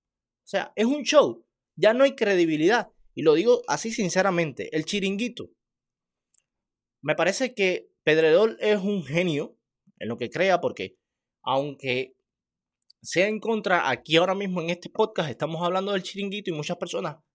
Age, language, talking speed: 30-49, Spanish, 155 wpm